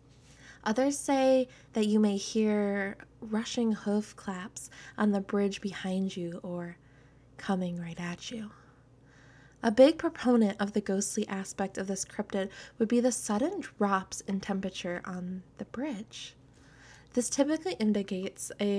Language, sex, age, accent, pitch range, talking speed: English, female, 20-39, American, 195-245 Hz, 135 wpm